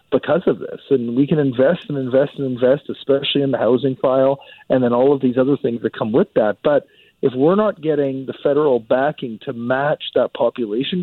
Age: 40-59